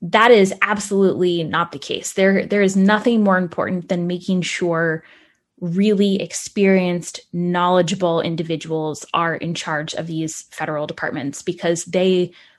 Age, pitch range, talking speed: 10-29, 165-195 Hz, 135 wpm